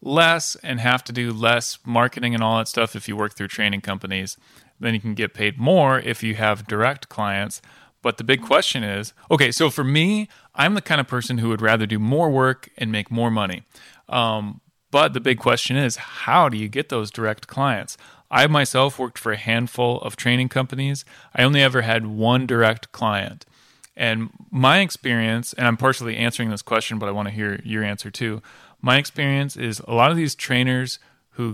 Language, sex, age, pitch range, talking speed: English, male, 30-49, 105-125 Hz, 205 wpm